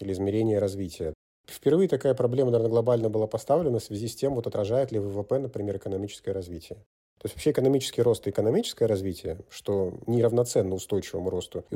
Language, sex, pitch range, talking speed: Russian, male, 95-115 Hz, 175 wpm